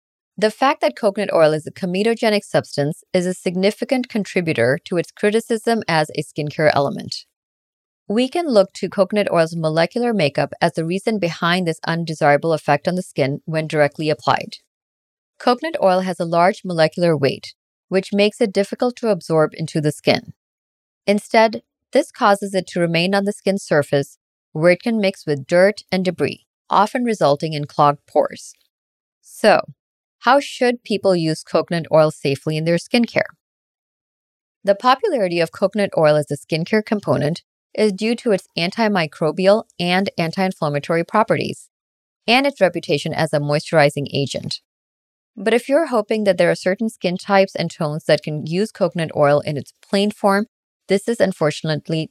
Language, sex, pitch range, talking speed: English, female, 155-210 Hz, 160 wpm